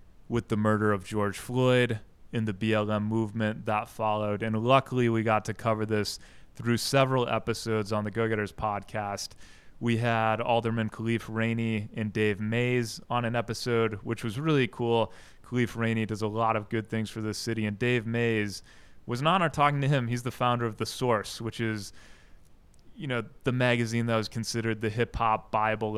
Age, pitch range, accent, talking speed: 20-39, 105-115 Hz, American, 180 wpm